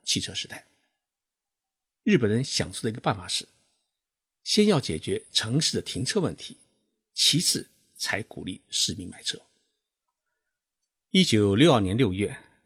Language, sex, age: Chinese, male, 60-79